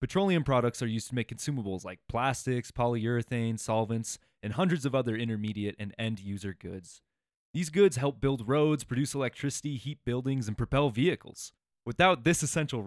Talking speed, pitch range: 160 wpm, 105-135 Hz